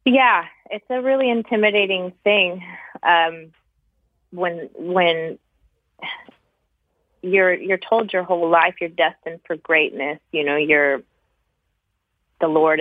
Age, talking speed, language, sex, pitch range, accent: 20-39, 110 wpm, English, female, 145-175 Hz, American